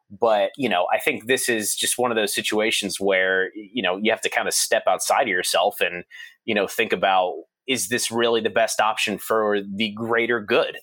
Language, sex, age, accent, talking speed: English, male, 30-49, American, 215 wpm